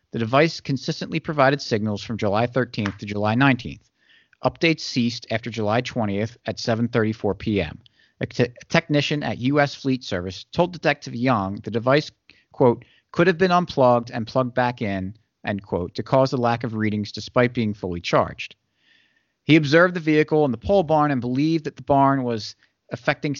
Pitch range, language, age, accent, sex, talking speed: 110-145 Hz, English, 40-59, American, male, 170 wpm